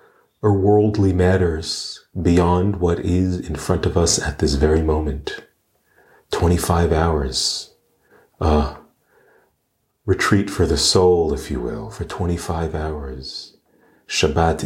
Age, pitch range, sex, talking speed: 40-59, 75-90 Hz, male, 120 wpm